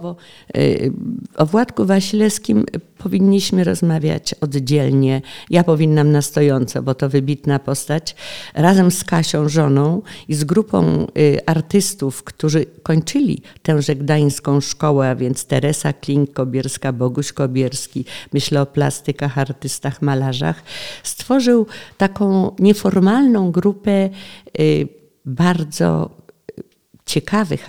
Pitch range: 140-190 Hz